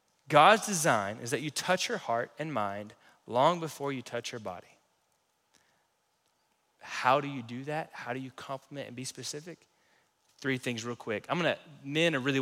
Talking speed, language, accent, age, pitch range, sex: 180 wpm, English, American, 20-39, 115-150 Hz, male